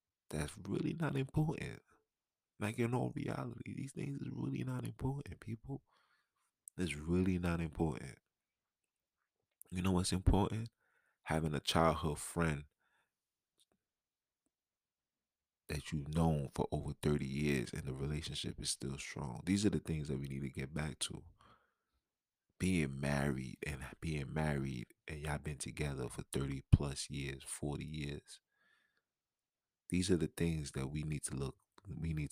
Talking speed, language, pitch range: 145 wpm, English, 75-90 Hz